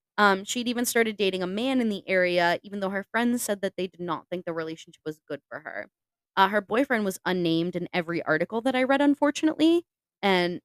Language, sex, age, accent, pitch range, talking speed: English, female, 20-39, American, 165-195 Hz, 220 wpm